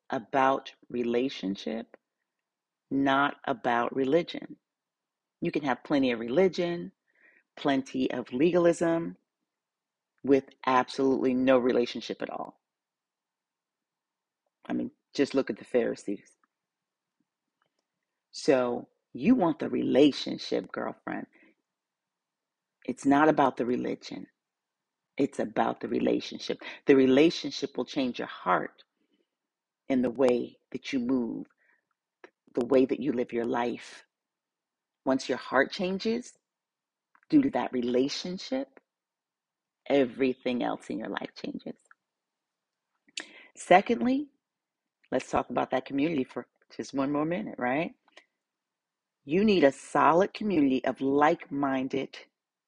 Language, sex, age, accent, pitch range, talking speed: English, female, 40-59, American, 130-185 Hz, 105 wpm